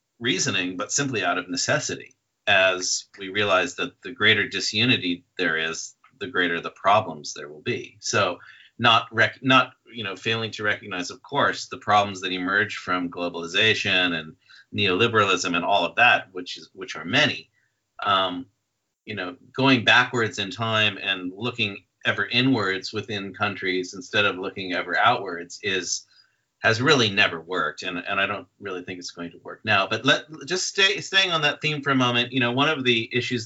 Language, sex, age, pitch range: English, male, 40-59, 95-125 Hz